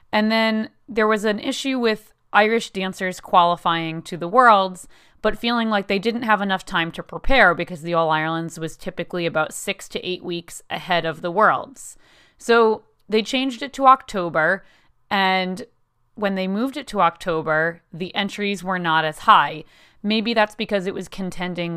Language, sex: English, female